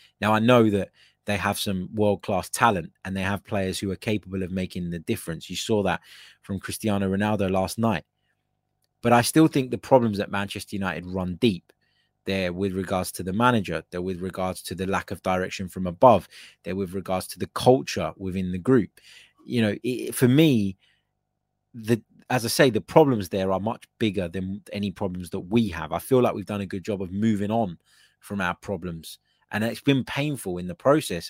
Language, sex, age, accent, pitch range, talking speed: English, male, 20-39, British, 95-115 Hz, 205 wpm